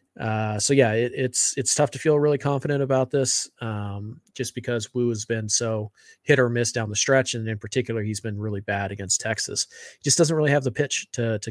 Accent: American